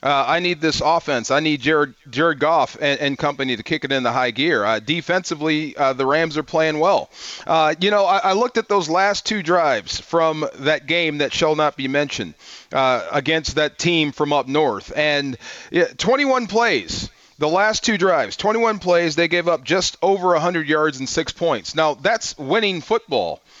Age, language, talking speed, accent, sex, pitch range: 40-59, English, 195 wpm, American, male, 155-200 Hz